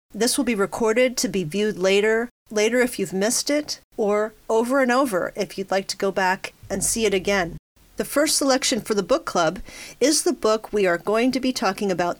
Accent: American